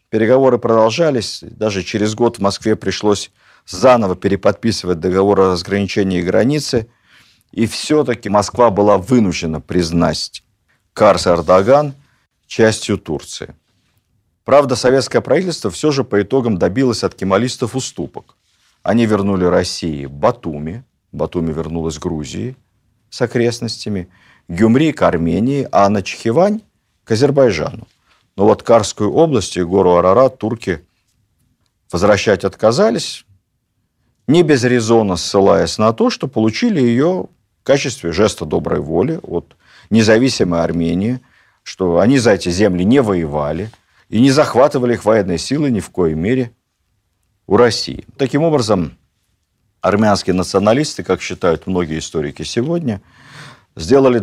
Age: 50-69